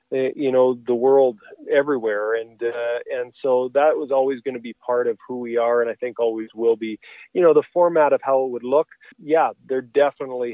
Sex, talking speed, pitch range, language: male, 215 wpm, 125-140 Hz, English